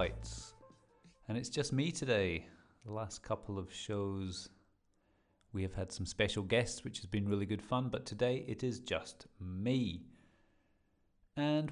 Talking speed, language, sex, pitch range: 150 wpm, English, male, 95-120 Hz